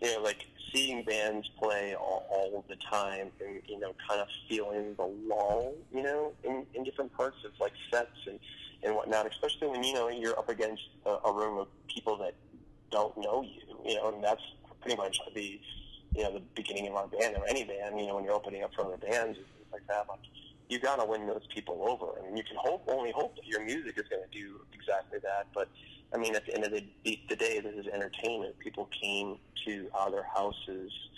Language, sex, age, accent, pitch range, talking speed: English, male, 20-39, American, 100-115 Hz, 225 wpm